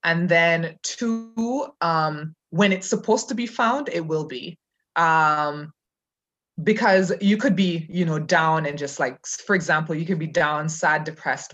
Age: 20-39